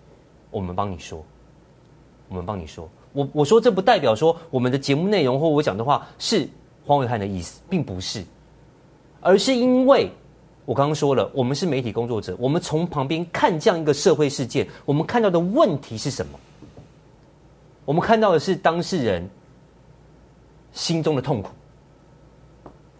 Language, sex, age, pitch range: Chinese, male, 30-49, 110-160 Hz